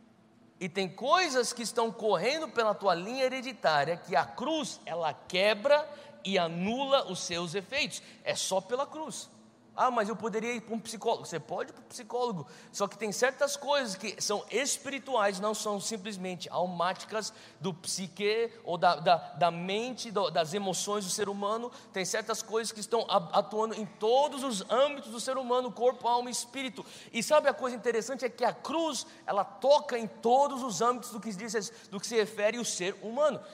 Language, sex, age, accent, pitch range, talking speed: English, male, 20-39, Brazilian, 200-260 Hz, 180 wpm